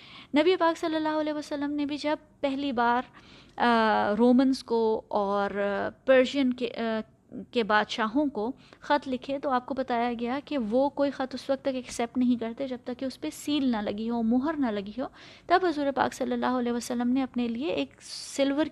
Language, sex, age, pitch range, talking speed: Urdu, female, 20-39, 240-310 Hz, 195 wpm